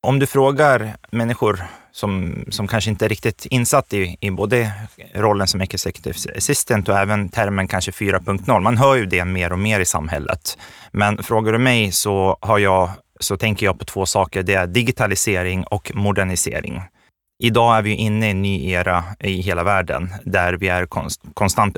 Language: Swedish